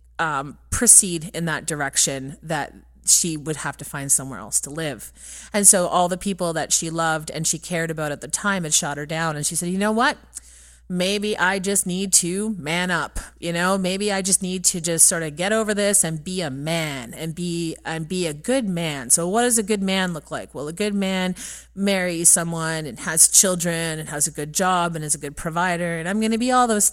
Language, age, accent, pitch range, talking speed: English, 30-49, American, 155-190 Hz, 235 wpm